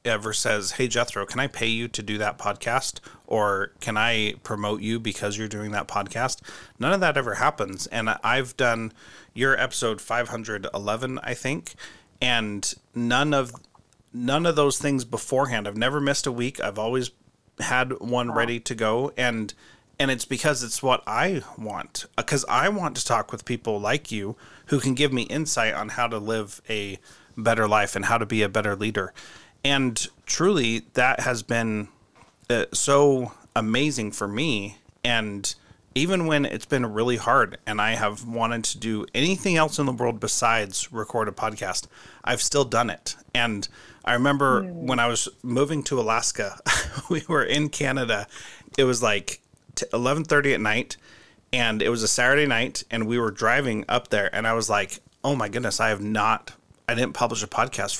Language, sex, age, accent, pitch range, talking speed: English, male, 30-49, American, 110-130 Hz, 180 wpm